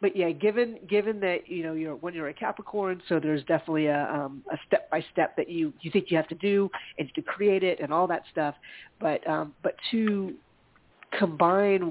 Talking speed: 210 wpm